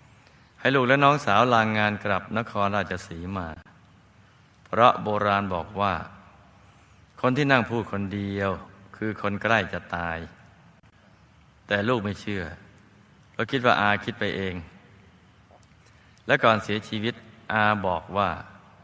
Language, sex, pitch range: Thai, male, 95-115 Hz